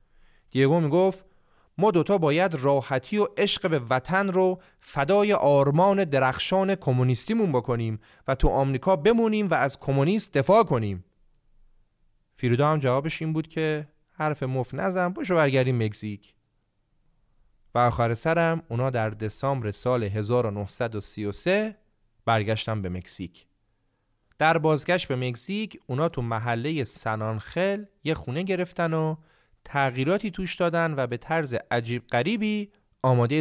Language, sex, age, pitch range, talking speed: Persian, male, 30-49, 120-175 Hz, 125 wpm